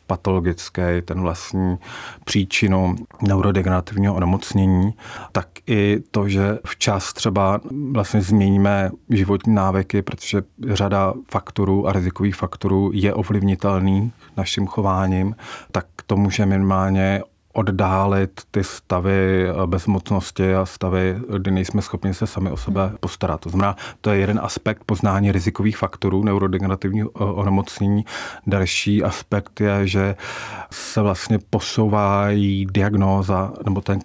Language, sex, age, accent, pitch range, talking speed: Czech, male, 30-49, native, 95-105 Hz, 115 wpm